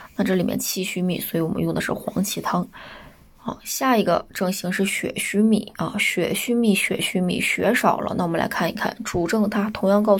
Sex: female